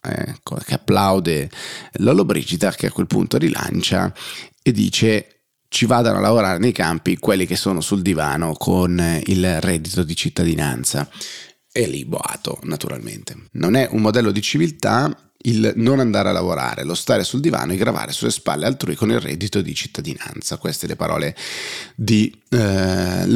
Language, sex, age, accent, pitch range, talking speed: Italian, male, 30-49, native, 95-110 Hz, 155 wpm